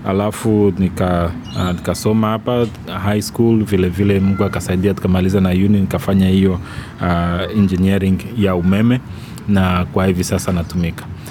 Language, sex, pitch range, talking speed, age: Swahili, male, 90-110 Hz, 125 wpm, 30-49